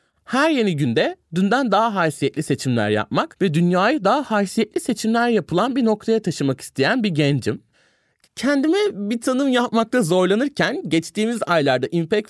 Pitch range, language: 145-220 Hz, Turkish